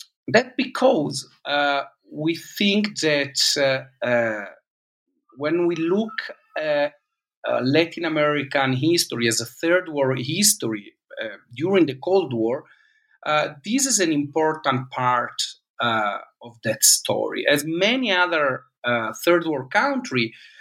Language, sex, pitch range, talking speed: English, male, 130-180 Hz, 125 wpm